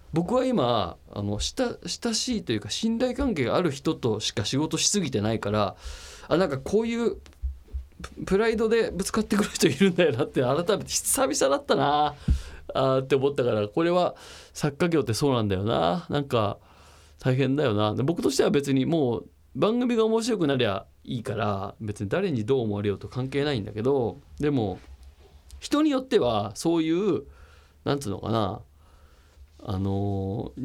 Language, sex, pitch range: Japanese, male, 95-160 Hz